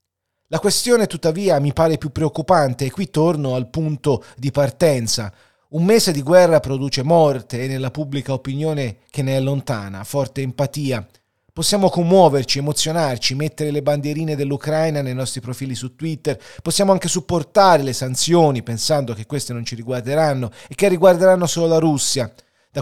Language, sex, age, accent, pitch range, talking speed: Italian, male, 30-49, native, 120-155 Hz, 160 wpm